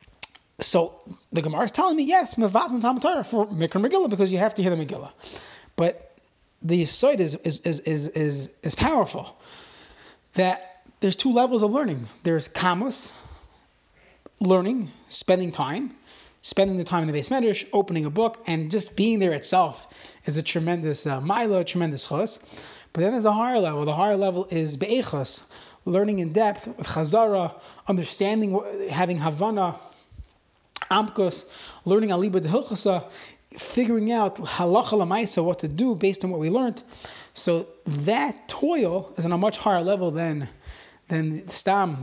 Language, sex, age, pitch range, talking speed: English, male, 30-49, 165-210 Hz, 160 wpm